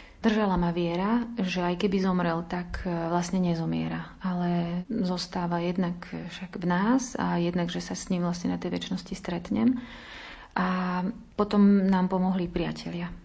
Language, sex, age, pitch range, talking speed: Slovak, female, 30-49, 180-210 Hz, 145 wpm